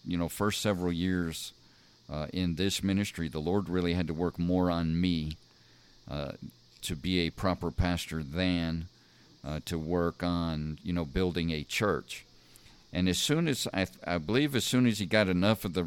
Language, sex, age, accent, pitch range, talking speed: English, male, 50-69, American, 80-90 Hz, 185 wpm